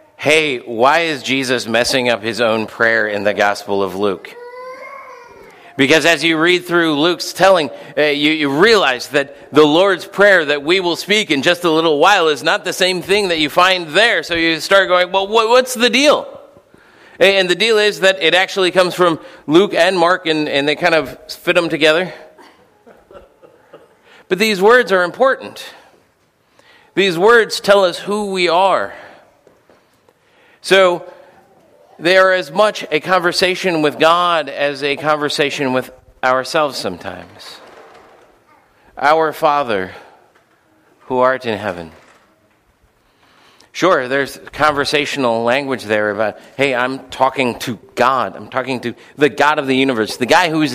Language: English